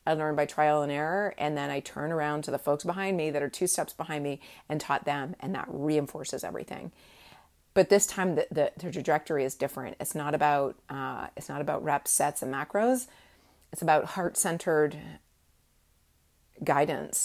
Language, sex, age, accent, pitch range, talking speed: English, female, 30-49, American, 145-200 Hz, 175 wpm